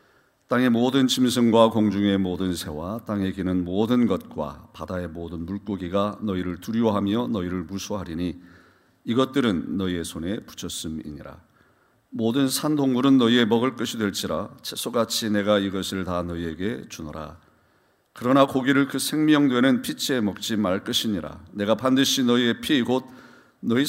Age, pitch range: 40-59, 95-130 Hz